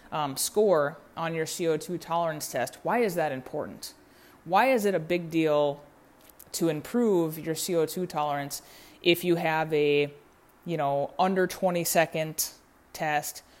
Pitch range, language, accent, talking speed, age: 145-175 Hz, English, American, 140 wpm, 20-39